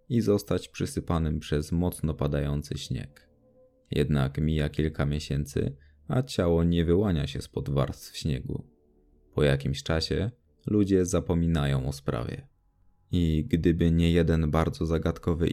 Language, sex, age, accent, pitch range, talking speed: Polish, male, 20-39, native, 80-95 Hz, 130 wpm